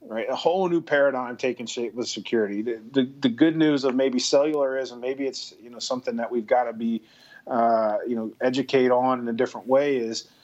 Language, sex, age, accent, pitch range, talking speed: English, male, 30-49, American, 115-135 Hz, 225 wpm